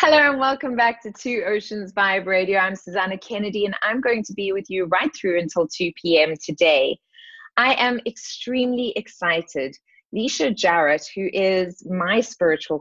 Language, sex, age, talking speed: English, female, 20-39, 165 wpm